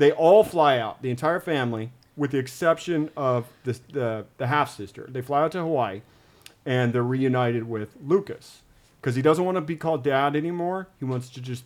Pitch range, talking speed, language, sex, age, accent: 120-150 Hz, 200 wpm, English, male, 40-59, American